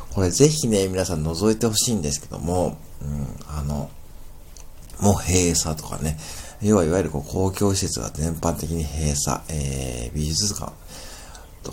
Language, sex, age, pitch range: Japanese, male, 50-69, 75-100 Hz